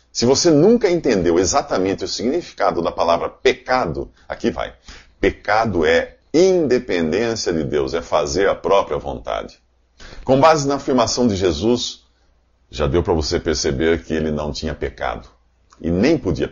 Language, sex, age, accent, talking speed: Portuguese, male, 50-69, Brazilian, 150 wpm